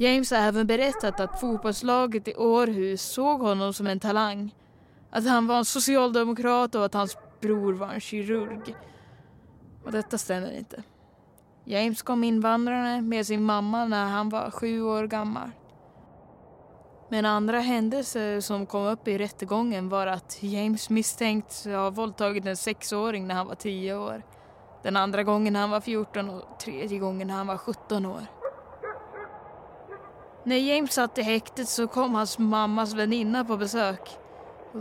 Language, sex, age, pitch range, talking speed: Swedish, female, 20-39, 200-235 Hz, 155 wpm